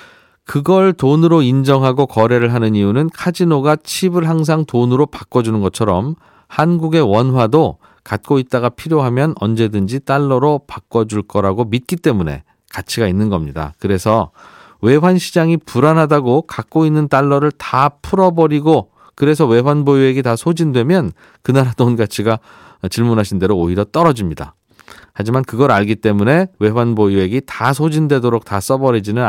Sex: male